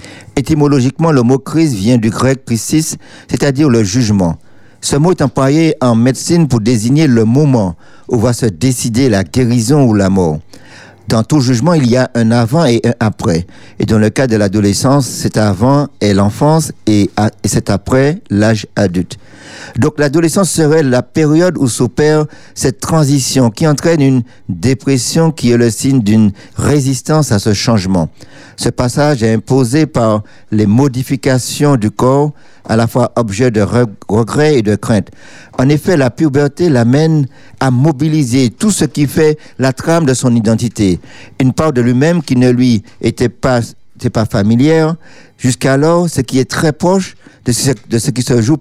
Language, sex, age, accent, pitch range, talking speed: French, male, 50-69, French, 110-140 Hz, 165 wpm